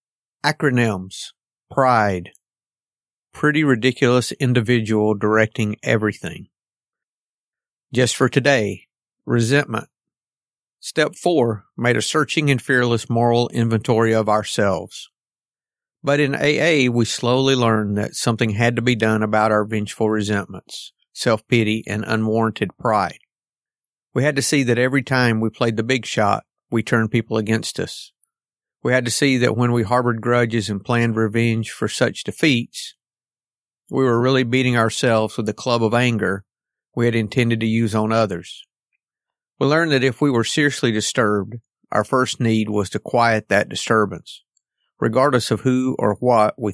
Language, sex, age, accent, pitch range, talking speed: English, male, 50-69, American, 110-130 Hz, 145 wpm